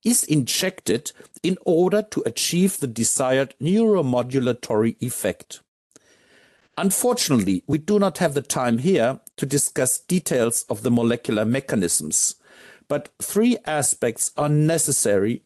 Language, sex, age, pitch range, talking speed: English, male, 60-79, 120-185 Hz, 115 wpm